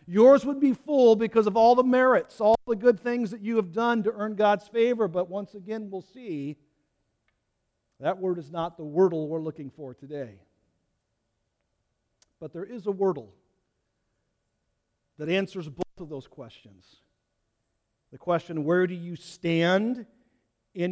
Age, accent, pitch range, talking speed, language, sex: 50-69, American, 135-220 Hz, 155 wpm, English, male